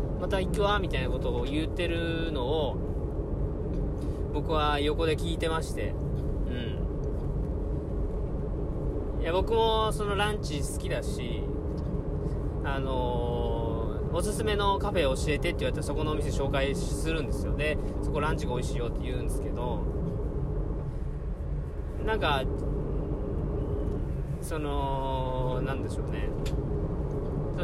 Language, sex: Japanese, male